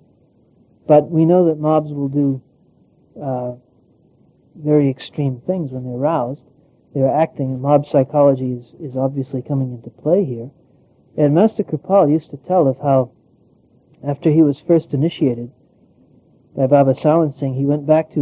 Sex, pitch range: male, 130-150 Hz